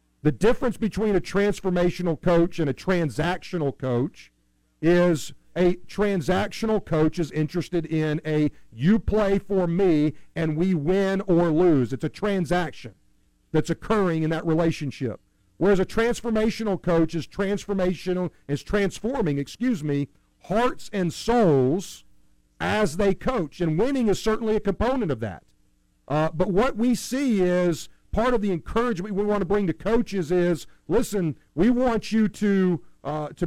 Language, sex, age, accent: English, male, 50-69, American